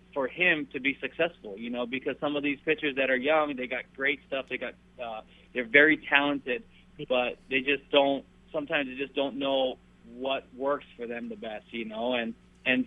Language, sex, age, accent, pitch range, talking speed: English, male, 20-39, American, 125-145 Hz, 205 wpm